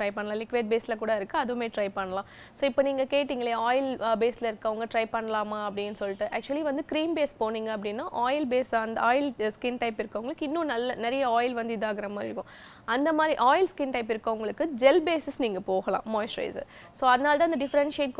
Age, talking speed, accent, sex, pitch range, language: 20-39, 190 wpm, native, female, 225-275 Hz, Tamil